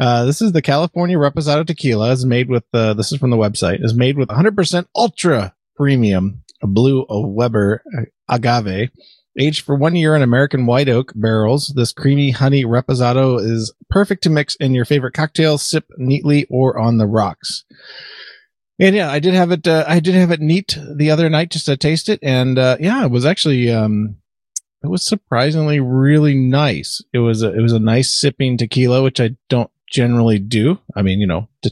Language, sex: English, male